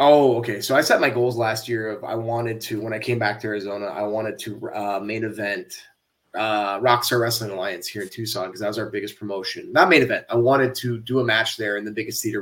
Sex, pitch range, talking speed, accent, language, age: male, 105-120 Hz, 250 wpm, American, English, 20-39